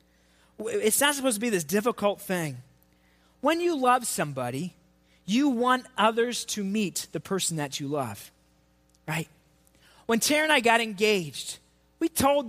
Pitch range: 185-255 Hz